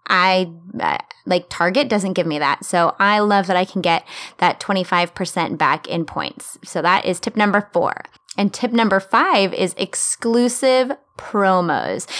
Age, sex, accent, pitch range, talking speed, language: 20-39, female, American, 180-230 Hz, 160 wpm, English